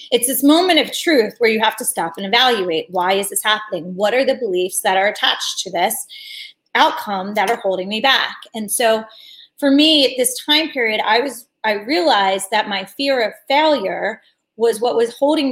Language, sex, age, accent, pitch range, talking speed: English, female, 30-49, American, 210-265 Hz, 200 wpm